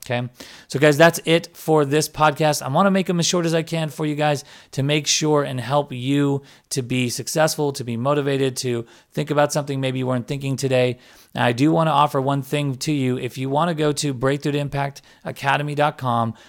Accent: American